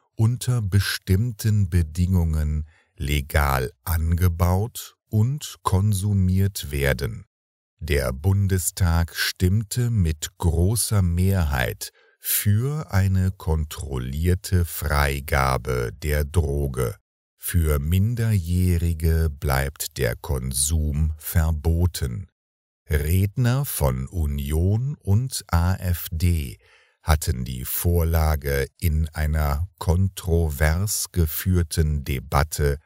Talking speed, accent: 70 wpm, German